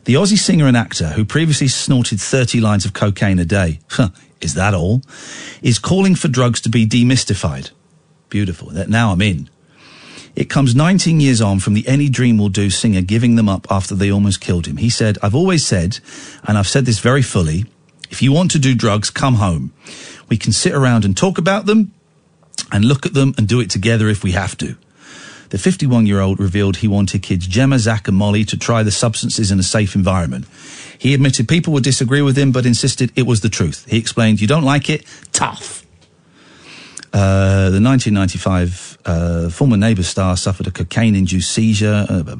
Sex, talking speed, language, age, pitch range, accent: male, 195 wpm, English, 40-59, 100-140 Hz, British